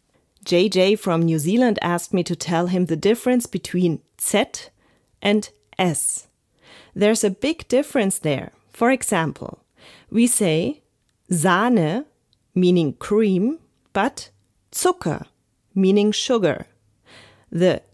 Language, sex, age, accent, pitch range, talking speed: German, female, 30-49, German, 170-230 Hz, 105 wpm